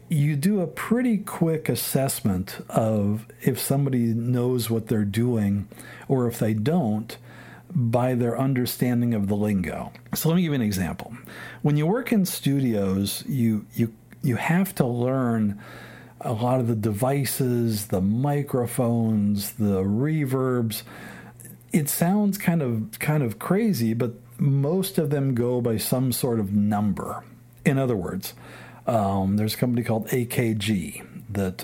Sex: male